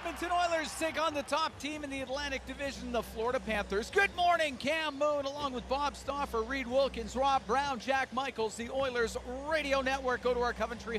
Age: 40-59